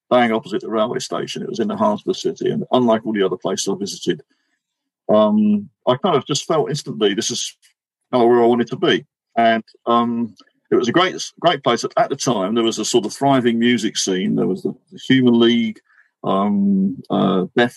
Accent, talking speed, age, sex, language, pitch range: British, 210 wpm, 40-59, male, English, 115-135 Hz